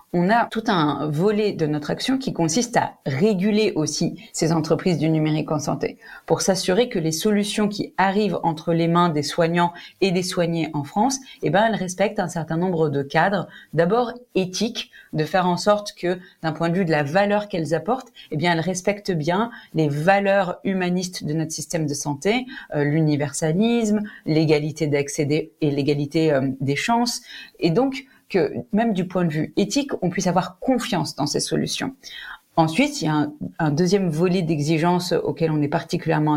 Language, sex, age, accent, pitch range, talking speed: French, female, 30-49, French, 160-205 Hz, 180 wpm